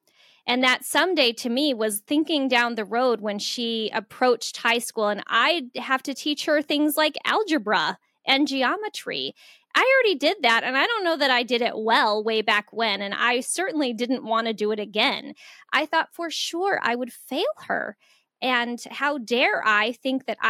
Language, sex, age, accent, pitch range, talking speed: English, female, 10-29, American, 220-285 Hz, 195 wpm